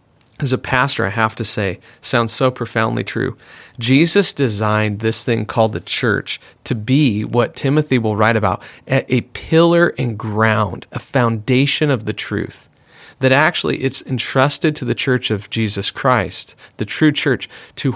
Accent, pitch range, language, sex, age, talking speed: American, 115-140 Hz, English, male, 40-59, 160 wpm